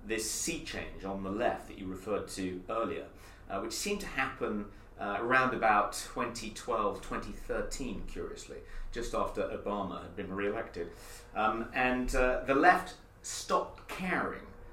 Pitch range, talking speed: 95-130 Hz, 145 wpm